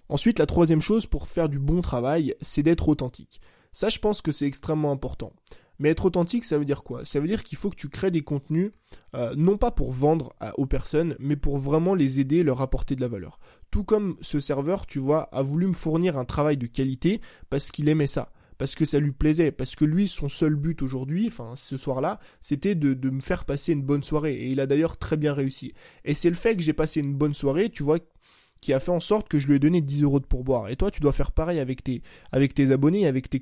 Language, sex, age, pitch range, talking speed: French, male, 20-39, 140-170 Hz, 255 wpm